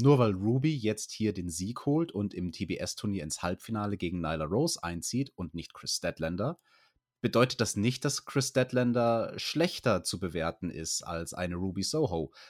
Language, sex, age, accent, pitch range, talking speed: German, male, 30-49, German, 95-130 Hz, 170 wpm